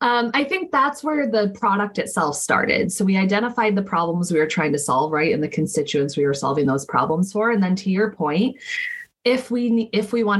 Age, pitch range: 20-39, 155-205 Hz